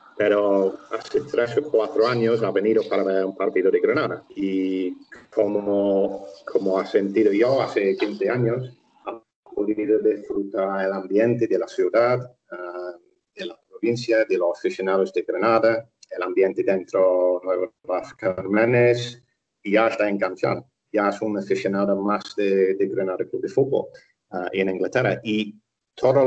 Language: Spanish